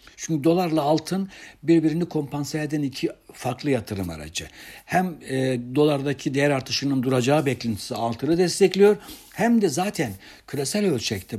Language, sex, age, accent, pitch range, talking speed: Turkish, male, 60-79, native, 120-160 Hz, 125 wpm